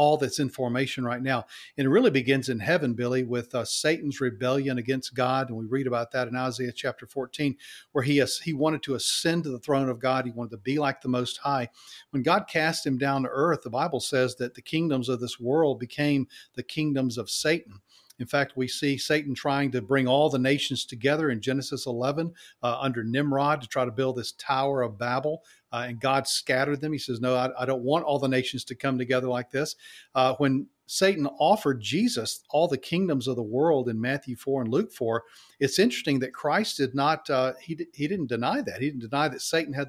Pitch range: 125-145 Hz